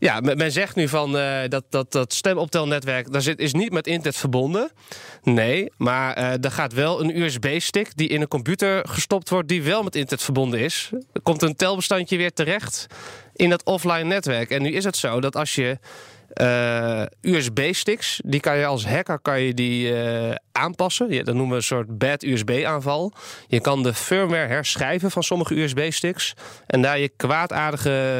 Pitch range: 130-170 Hz